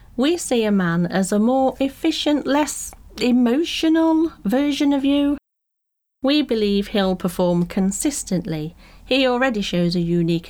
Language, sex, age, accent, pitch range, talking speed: English, female, 40-59, British, 175-240 Hz, 130 wpm